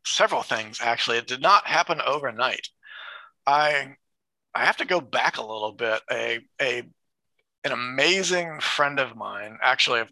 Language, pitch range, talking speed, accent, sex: English, 120-155 Hz, 155 wpm, American, male